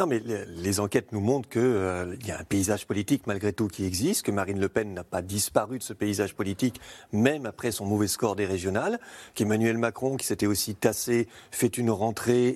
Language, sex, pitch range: French, male, 105-140 Hz